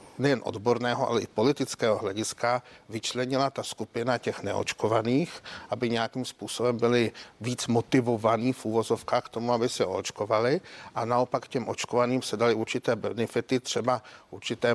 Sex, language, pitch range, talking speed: male, Czech, 115-135 Hz, 140 wpm